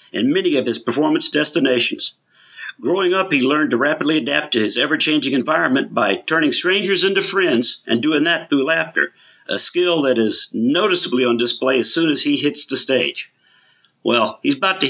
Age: 50-69